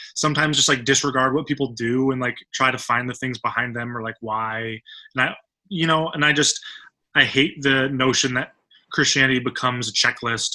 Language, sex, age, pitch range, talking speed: English, male, 20-39, 125-150 Hz, 200 wpm